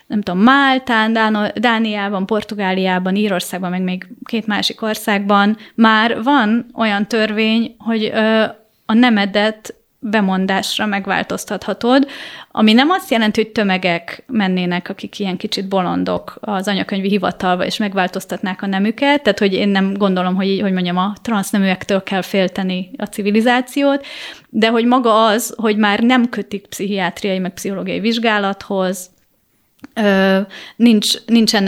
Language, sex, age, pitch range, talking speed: Hungarian, female, 30-49, 195-230 Hz, 125 wpm